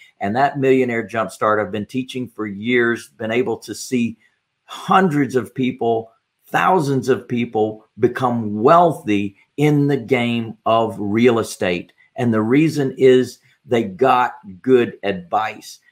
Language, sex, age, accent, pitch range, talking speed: English, male, 50-69, American, 110-135 Hz, 130 wpm